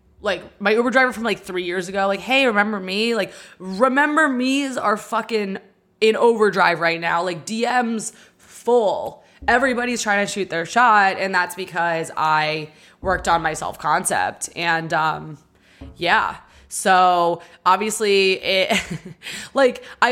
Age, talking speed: 20-39, 135 wpm